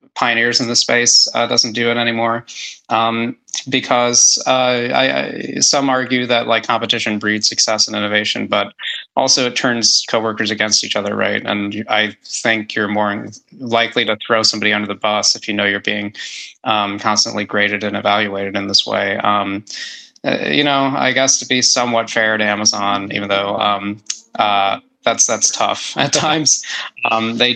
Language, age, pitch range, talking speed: English, 20-39, 105-125 Hz, 175 wpm